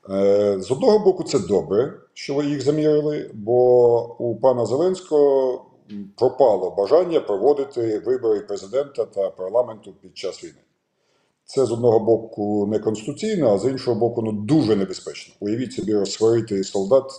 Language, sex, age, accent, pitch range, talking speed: Ukrainian, male, 50-69, native, 100-150 Hz, 140 wpm